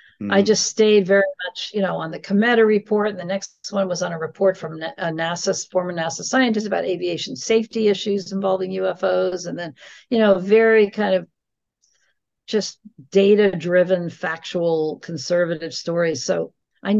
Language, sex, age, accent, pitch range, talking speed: English, female, 50-69, American, 175-215 Hz, 160 wpm